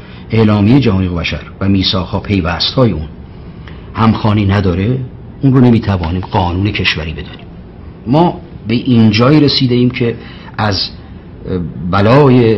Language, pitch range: Persian, 95-120 Hz